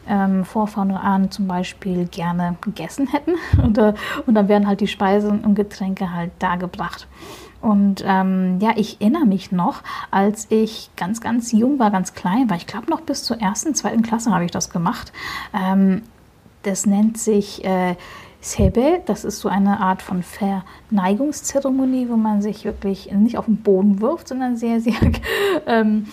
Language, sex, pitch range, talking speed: German, female, 195-225 Hz, 165 wpm